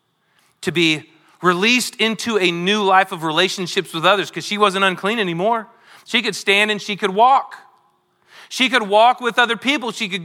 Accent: American